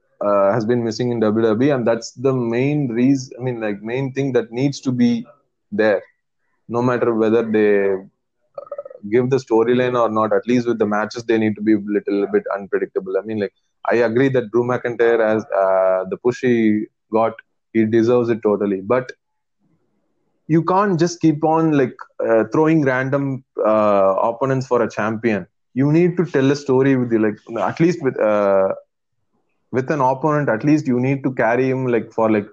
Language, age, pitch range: English, 20-39, 110-130 Hz